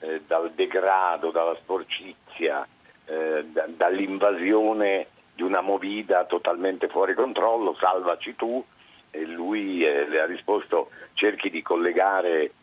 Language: Italian